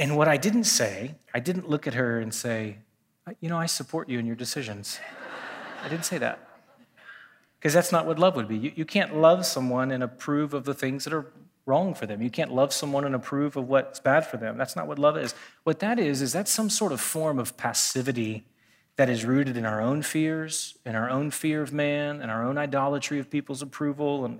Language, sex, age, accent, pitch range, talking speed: English, male, 30-49, American, 120-150 Hz, 230 wpm